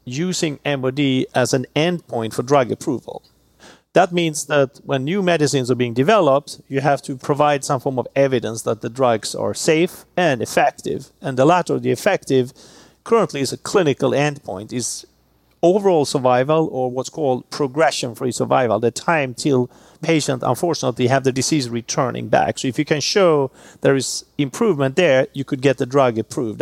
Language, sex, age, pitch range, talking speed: English, male, 40-59, 130-160 Hz, 175 wpm